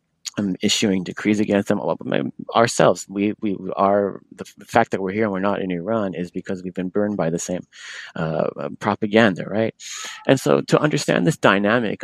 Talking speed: 180 wpm